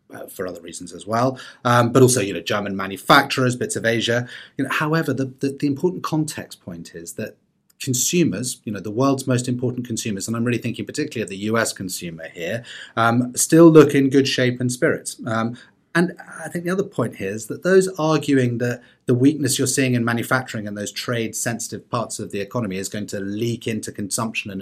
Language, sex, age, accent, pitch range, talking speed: English, male, 30-49, British, 110-140 Hz, 205 wpm